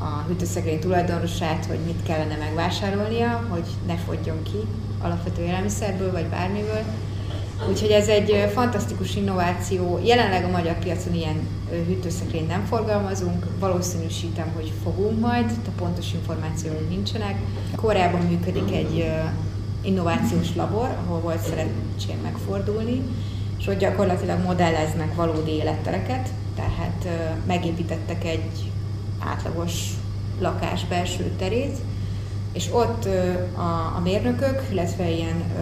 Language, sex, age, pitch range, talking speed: Hungarian, female, 30-49, 90-100 Hz, 110 wpm